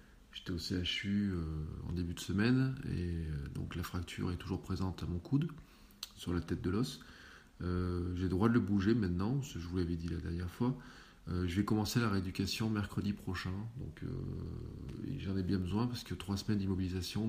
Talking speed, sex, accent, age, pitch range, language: 200 wpm, male, French, 40-59, 90-105 Hz, French